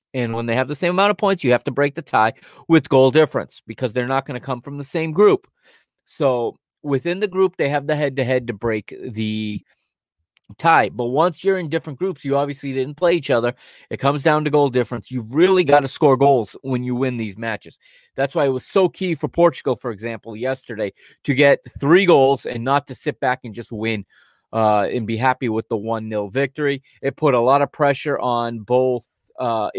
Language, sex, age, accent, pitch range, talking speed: English, male, 30-49, American, 115-145 Hz, 220 wpm